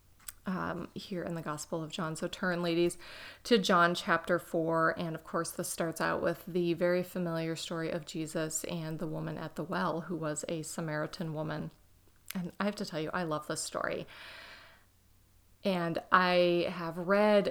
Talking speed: 180 wpm